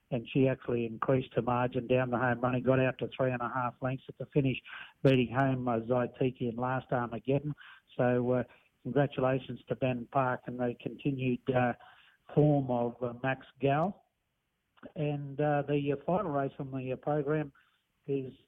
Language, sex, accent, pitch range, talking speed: English, male, Australian, 130-150 Hz, 175 wpm